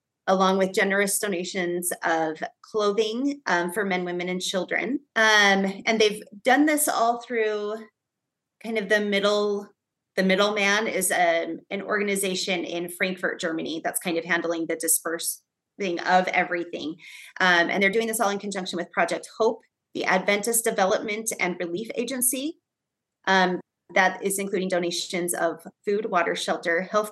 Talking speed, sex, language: 155 wpm, female, English